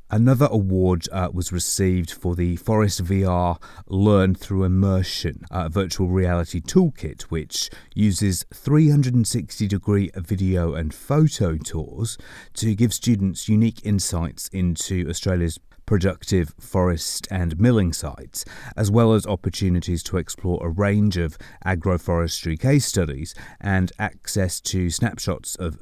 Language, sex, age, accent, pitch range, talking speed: English, male, 30-49, British, 85-110 Hz, 125 wpm